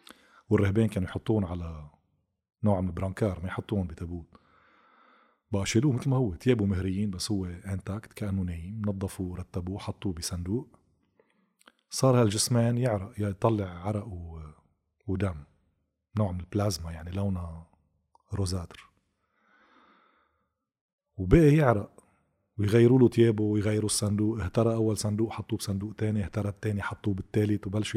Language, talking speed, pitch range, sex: Arabic, 120 wpm, 95-110 Hz, male